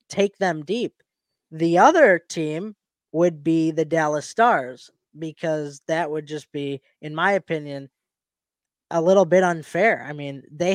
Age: 20-39